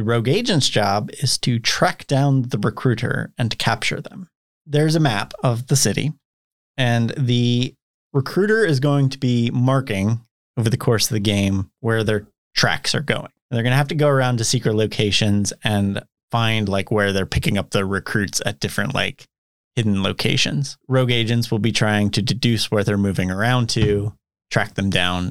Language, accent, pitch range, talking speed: English, American, 105-140 Hz, 185 wpm